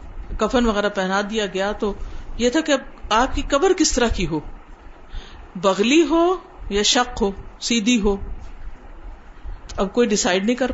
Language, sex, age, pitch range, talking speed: Urdu, female, 50-69, 200-285 Hz, 155 wpm